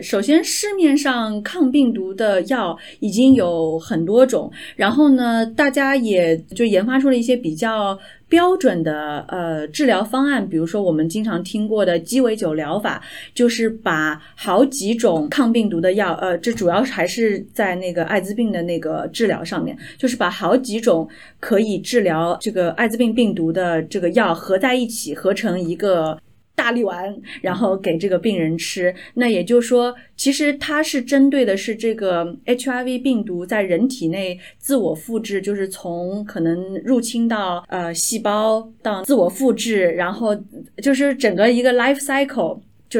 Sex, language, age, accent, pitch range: female, Chinese, 30-49, native, 180-250 Hz